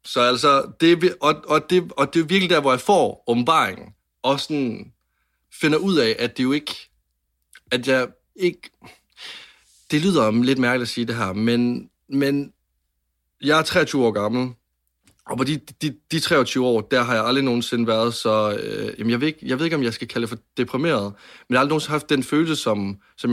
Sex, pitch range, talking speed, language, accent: male, 105-140 Hz, 210 wpm, Danish, native